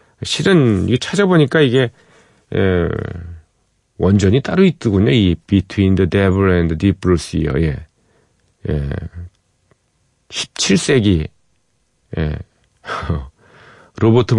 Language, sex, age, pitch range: Korean, male, 40-59, 85-115 Hz